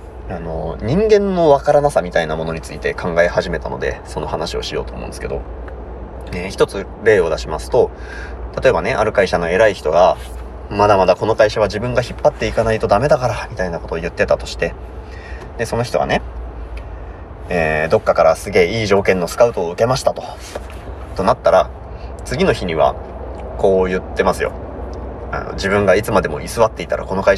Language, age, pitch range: Japanese, 30-49, 75-105 Hz